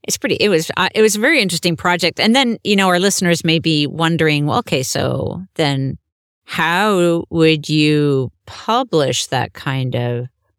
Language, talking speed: English, 170 wpm